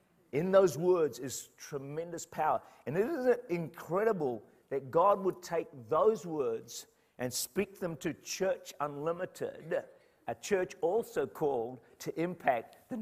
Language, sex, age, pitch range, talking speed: English, male, 50-69, 125-175 Hz, 135 wpm